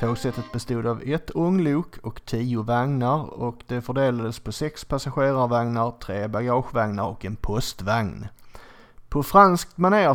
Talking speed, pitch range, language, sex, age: 130 wpm, 115-140 Hz, Swedish, male, 30-49